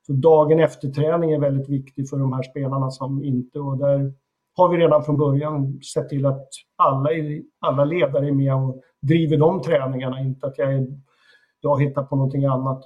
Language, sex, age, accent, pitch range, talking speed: Swedish, male, 50-69, native, 135-155 Hz, 185 wpm